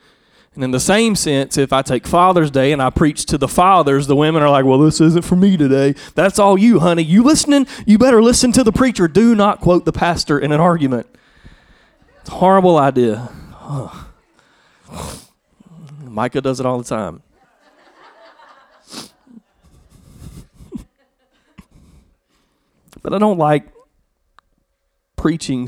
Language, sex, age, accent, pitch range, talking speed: English, male, 30-49, American, 110-160 Hz, 145 wpm